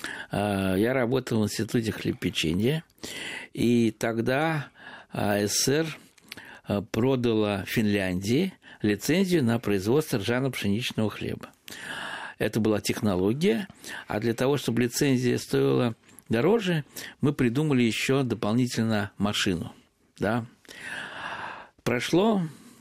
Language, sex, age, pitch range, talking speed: Russian, male, 60-79, 105-135 Hz, 85 wpm